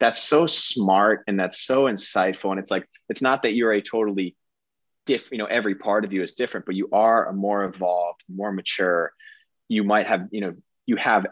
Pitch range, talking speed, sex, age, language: 90-105 Hz, 210 wpm, male, 20-39, English